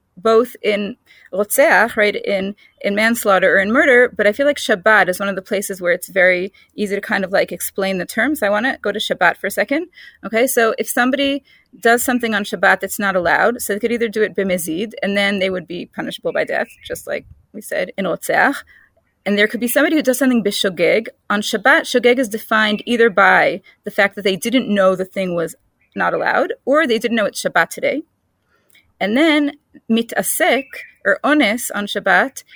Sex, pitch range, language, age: female, 200-260 Hz, English, 30-49